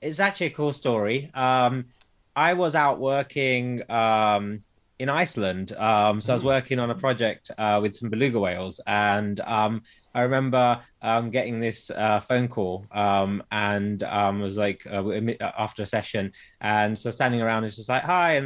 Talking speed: 180 wpm